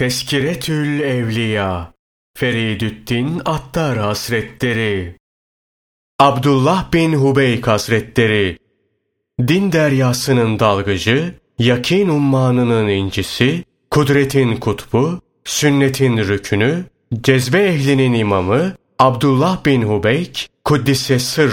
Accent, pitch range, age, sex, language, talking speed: native, 110-150 Hz, 40-59, male, Turkish, 70 wpm